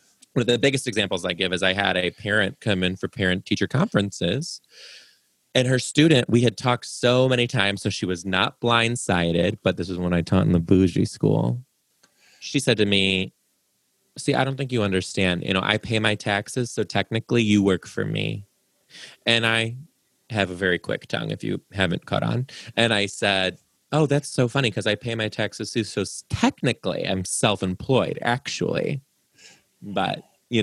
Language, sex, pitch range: English, male, 95-120 Hz